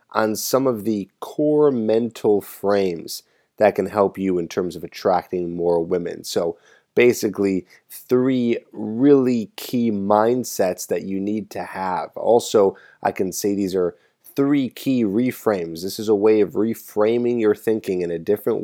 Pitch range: 90-110 Hz